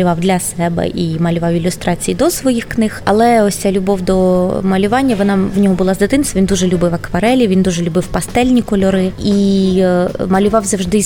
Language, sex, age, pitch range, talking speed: Ukrainian, female, 20-39, 180-205 Hz, 175 wpm